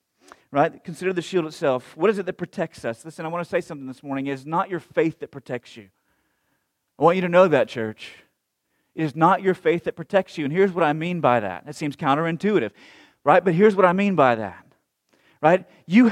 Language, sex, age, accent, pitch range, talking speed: English, male, 30-49, American, 160-215 Hz, 230 wpm